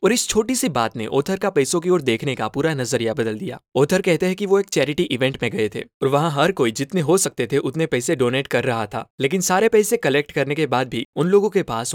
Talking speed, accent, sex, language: 270 wpm, native, male, Hindi